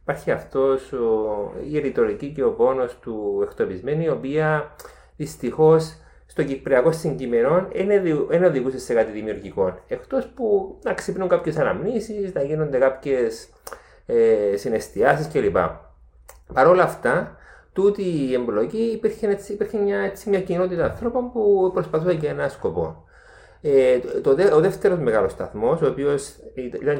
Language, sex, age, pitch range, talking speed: Greek, male, 30-49, 130-210 Hz, 135 wpm